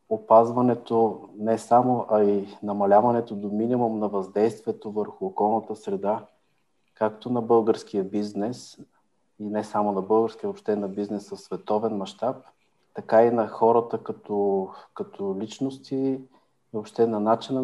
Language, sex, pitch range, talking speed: Bulgarian, male, 105-115 Hz, 135 wpm